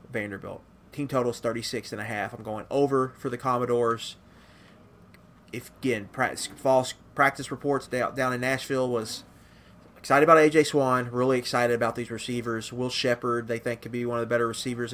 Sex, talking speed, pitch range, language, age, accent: male, 175 wpm, 110-125 Hz, English, 30-49, American